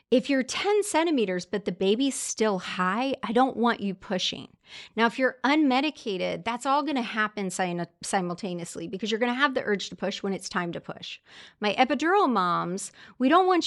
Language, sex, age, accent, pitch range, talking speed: English, female, 30-49, American, 185-255 Hz, 185 wpm